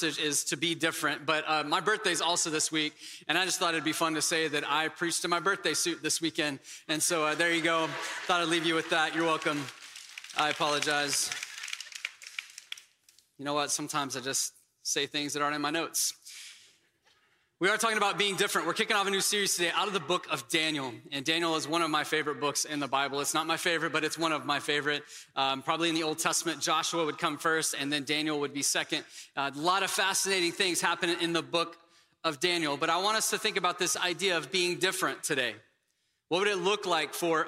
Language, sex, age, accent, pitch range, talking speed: English, male, 20-39, American, 155-185 Hz, 230 wpm